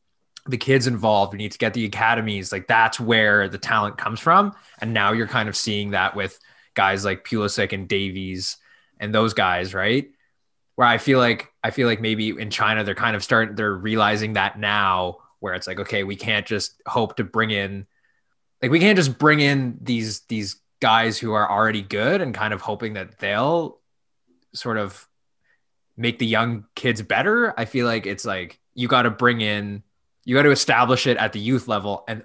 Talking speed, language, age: 200 wpm, English, 20-39